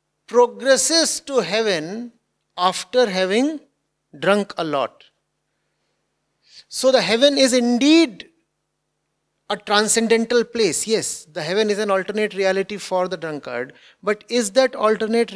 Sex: male